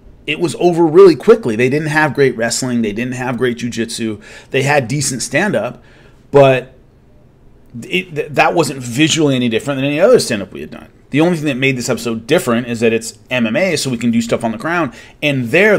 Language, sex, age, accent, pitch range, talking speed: English, male, 30-49, American, 115-140 Hz, 205 wpm